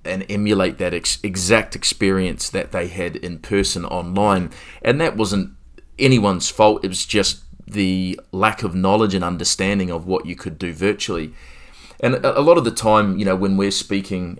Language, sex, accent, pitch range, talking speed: English, male, Australian, 90-110 Hz, 180 wpm